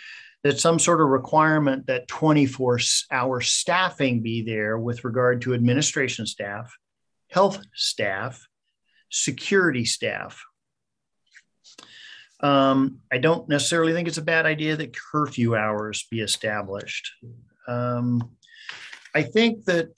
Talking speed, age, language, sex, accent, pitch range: 115 wpm, 50-69, English, male, American, 125-180 Hz